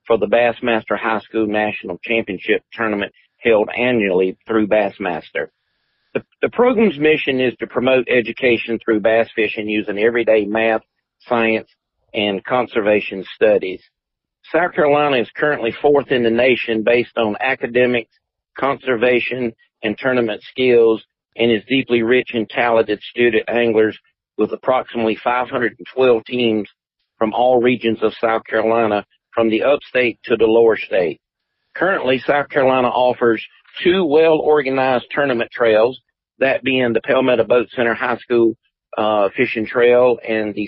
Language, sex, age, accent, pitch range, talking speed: English, male, 50-69, American, 110-125 Hz, 135 wpm